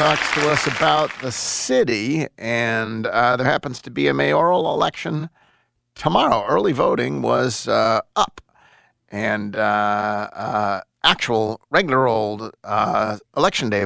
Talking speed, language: 130 wpm, English